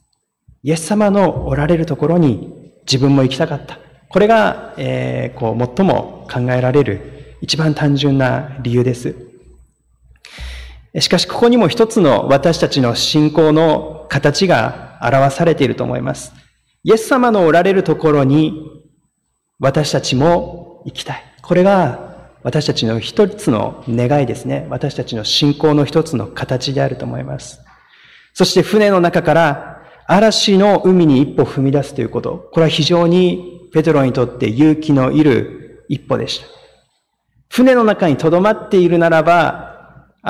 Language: Japanese